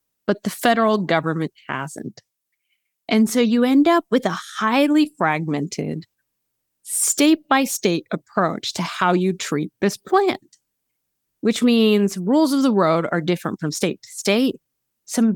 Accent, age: American, 30-49